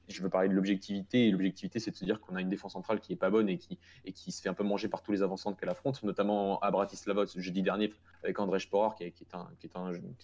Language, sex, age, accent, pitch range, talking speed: French, male, 20-39, French, 95-105 Hz, 270 wpm